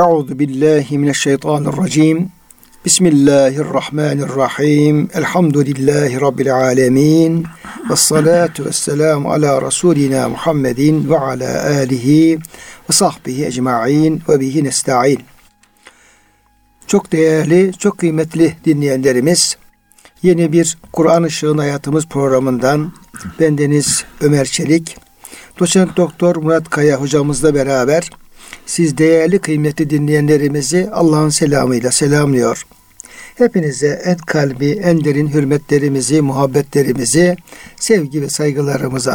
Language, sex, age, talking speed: Turkish, male, 60-79, 90 wpm